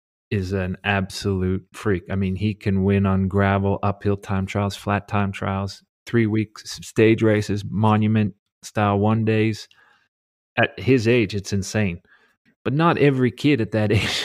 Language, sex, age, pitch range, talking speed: English, male, 30-49, 95-110 Hz, 155 wpm